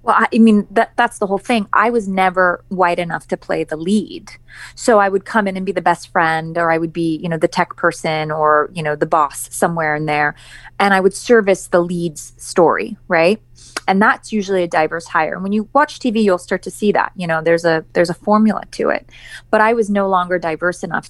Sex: female